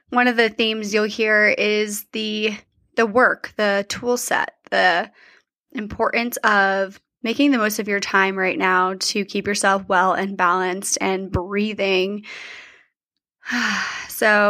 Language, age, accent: English, 20-39, American